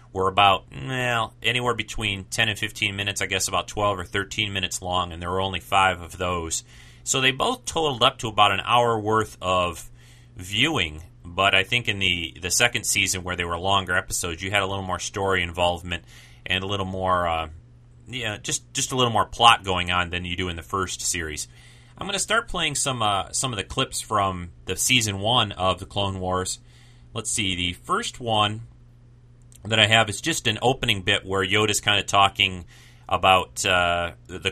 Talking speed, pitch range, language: 205 wpm, 90-115 Hz, English